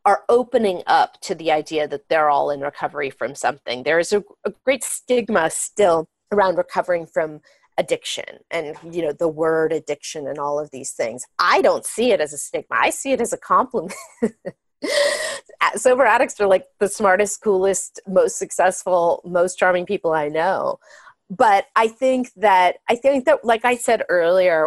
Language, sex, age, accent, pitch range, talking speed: English, female, 30-49, American, 165-245 Hz, 180 wpm